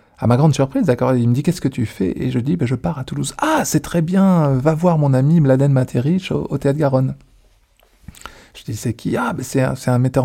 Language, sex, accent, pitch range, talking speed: French, male, French, 125-155 Hz, 295 wpm